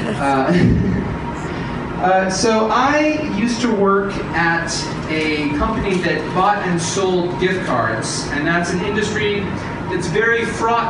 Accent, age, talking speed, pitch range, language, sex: American, 30-49, 125 wpm, 165-220 Hz, English, male